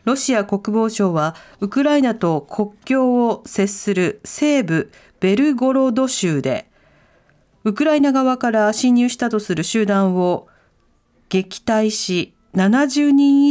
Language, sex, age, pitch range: Japanese, female, 40-59, 190-270 Hz